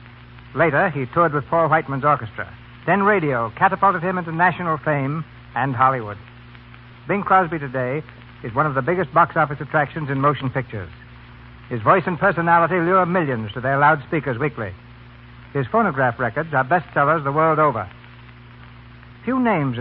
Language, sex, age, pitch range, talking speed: English, male, 60-79, 120-160 Hz, 150 wpm